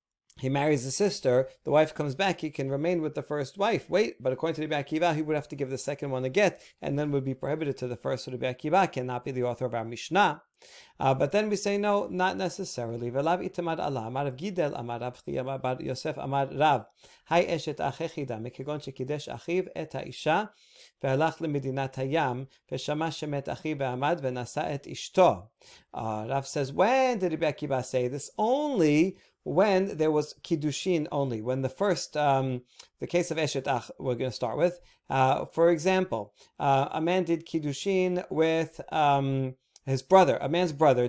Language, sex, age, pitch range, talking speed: English, male, 40-59, 135-175 Hz, 140 wpm